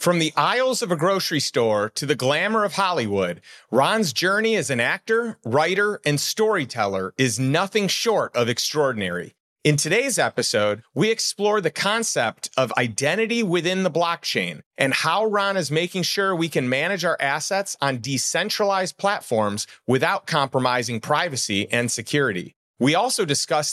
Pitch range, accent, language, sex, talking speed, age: 130-195 Hz, American, English, male, 150 wpm, 30-49